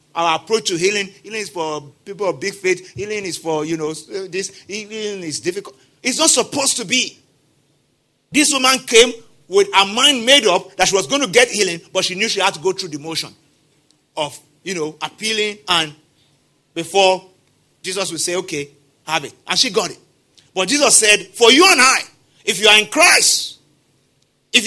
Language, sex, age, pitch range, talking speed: English, male, 50-69, 145-245 Hz, 190 wpm